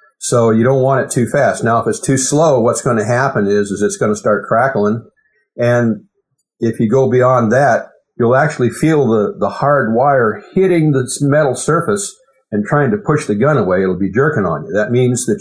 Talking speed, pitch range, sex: 215 wpm, 110-155 Hz, male